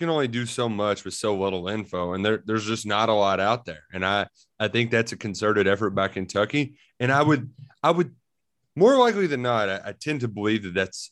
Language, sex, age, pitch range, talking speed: English, male, 30-49, 100-125 Hz, 230 wpm